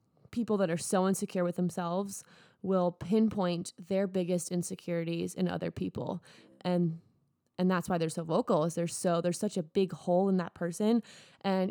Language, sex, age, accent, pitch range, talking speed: English, female, 20-39, American, 170-200 Hz, 175 wpm